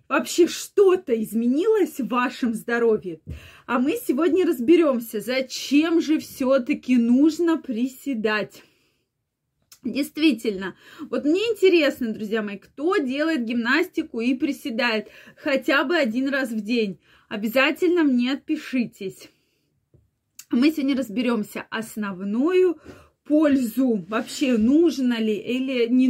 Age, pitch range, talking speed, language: 20-39, 230-310 Hz, 105 wpm, Russian